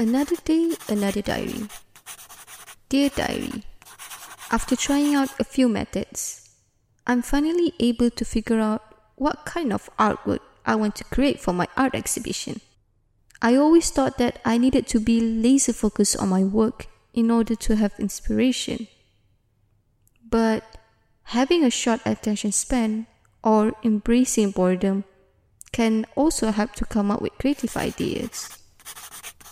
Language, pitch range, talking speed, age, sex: English, 190-250 Hz, 130 wpm, 20-39, female